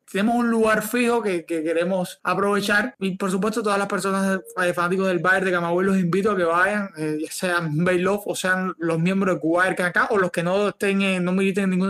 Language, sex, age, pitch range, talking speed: Spanish, male, 20-39, 180-210 Hz, 230 wpm